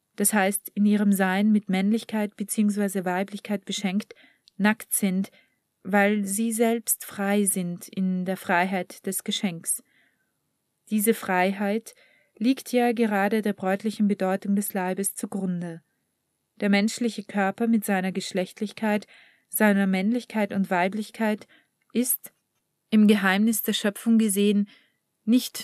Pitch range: 195-220 Hz